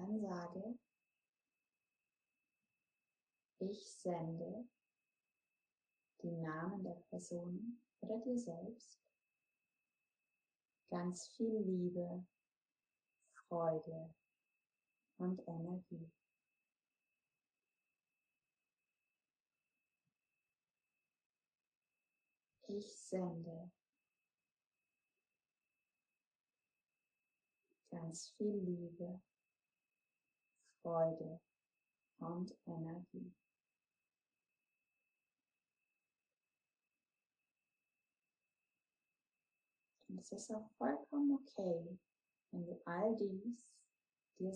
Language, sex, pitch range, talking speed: German, female, 170-210 Hz, 50 wpm